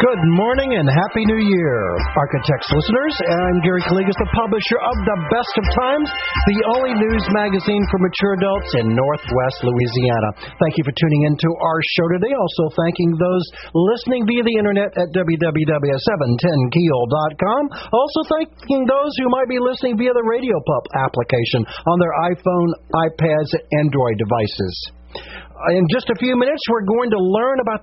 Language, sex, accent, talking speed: English, male, American, 155 wpm